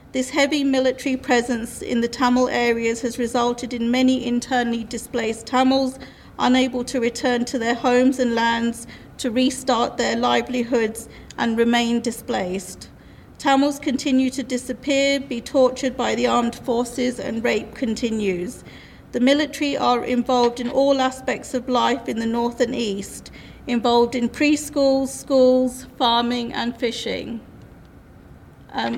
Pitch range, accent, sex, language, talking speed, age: 235-260 Hz, British, female, English, 135 wpm, 40-59